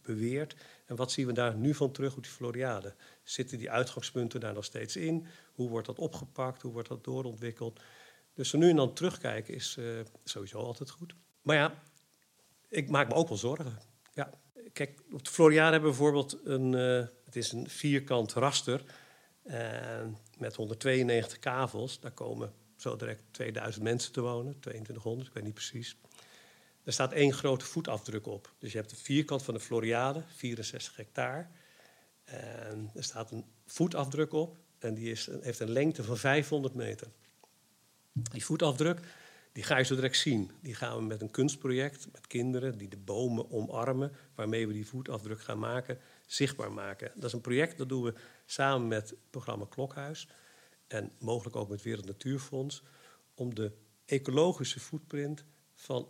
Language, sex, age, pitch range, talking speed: English, male, 50-69, 115-145 Hz, 170 wpm